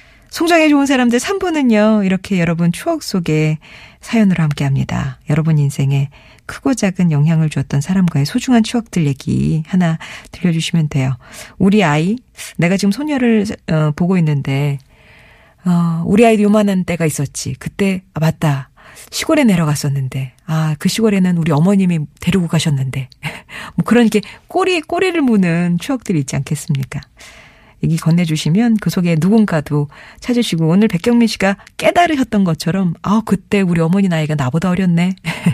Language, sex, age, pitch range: Korean, female, 40-59, 150-215 Hz